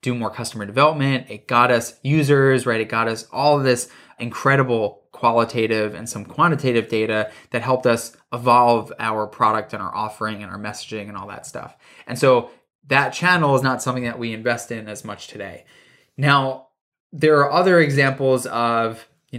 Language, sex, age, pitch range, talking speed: English, male, 20-39, 115-145 Hz, 175 wpm